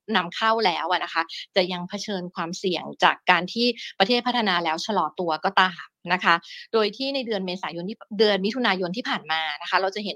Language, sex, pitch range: Thai, female, 175-215 Hz